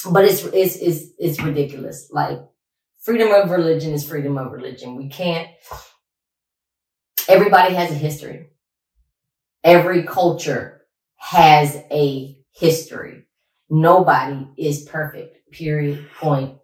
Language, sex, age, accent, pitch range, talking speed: English, female, 20-39, American, 140-165 Hz, 110 wpm